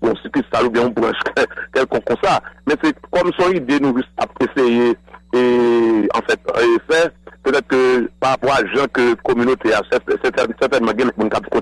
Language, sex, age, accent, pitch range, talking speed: English, male, 60-79, French, 120-145 Hz, 210 wpm